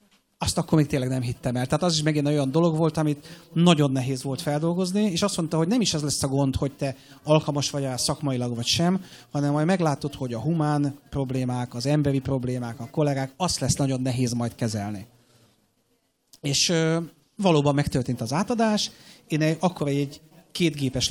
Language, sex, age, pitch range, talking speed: Hungarian, male, 30-49, 130-160 Hz, 180 wpm